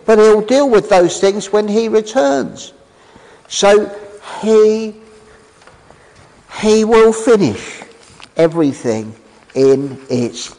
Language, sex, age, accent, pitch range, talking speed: English, male, 50-69, British, 155-220 Hz, 95 wpm